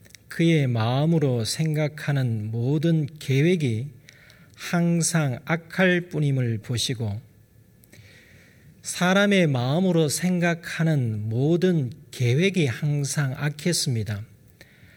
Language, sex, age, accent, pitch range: Korean, male, 40-59, native, 120-165 Hz